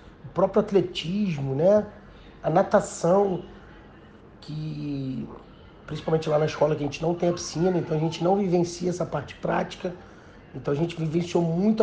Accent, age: Brazilian, 40-59